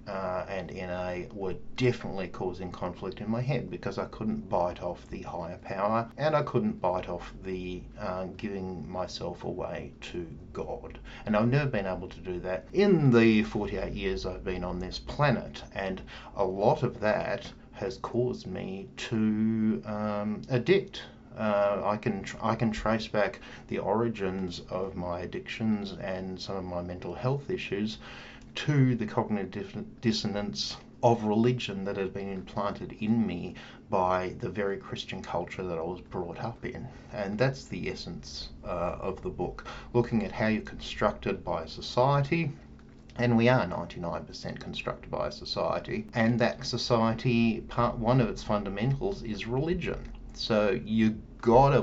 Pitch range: 95-120 Hz